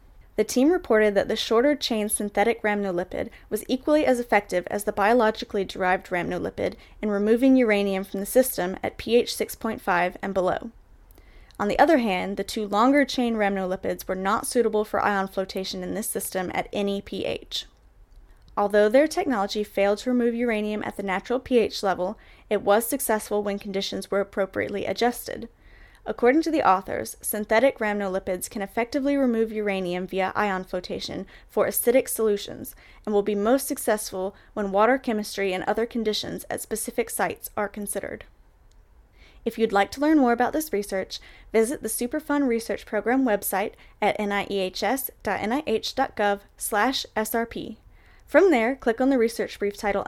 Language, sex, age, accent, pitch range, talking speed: English, female, 10-29, American, 200-240 Hz, 150 wpm